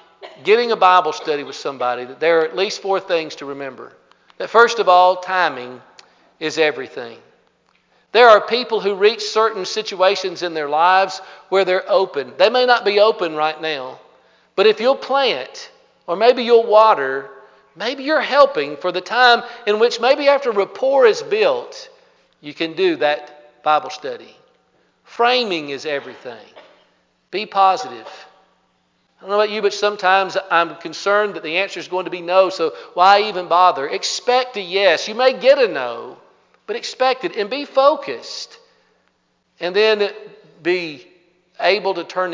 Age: 50-69